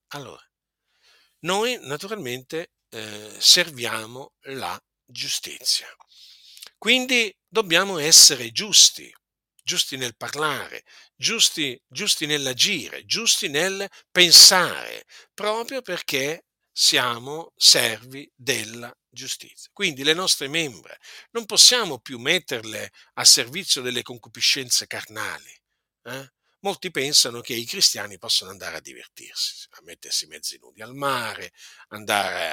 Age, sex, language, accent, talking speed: 50-69, male, Italian, native, 100 wpm